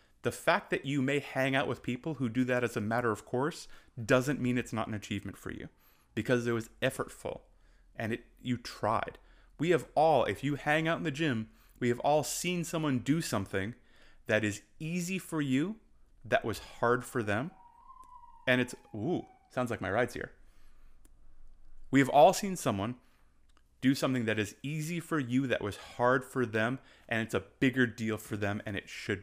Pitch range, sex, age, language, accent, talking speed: 115-150 Hz, male, 30-49, English, American, 195 wpm